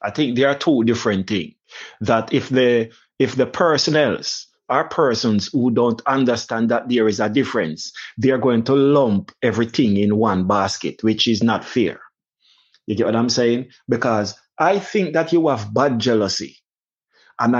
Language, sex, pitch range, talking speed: English, male, 110-150 Hz, 170 wpm